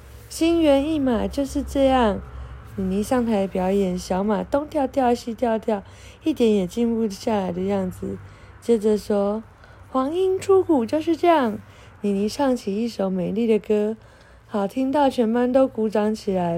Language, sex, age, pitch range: Chinese, female, 20-39, 195-270 Hz